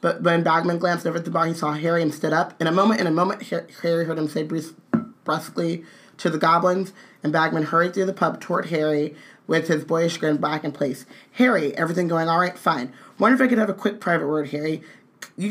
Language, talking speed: English, 235 wpm